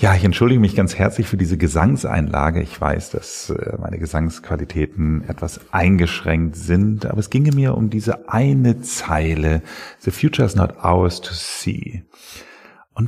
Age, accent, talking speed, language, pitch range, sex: 40-59, German, 150 wpm, German, 85-105 Hz, male